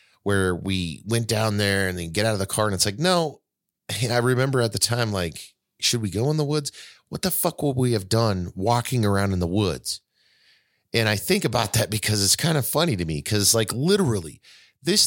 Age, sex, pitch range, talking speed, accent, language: 30-49, male, 95-130 Hz, 225 wpm, American, English